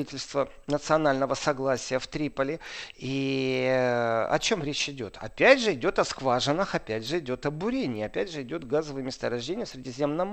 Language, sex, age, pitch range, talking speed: Russian, male, 40-59, 135-175 Hz, 150 wpm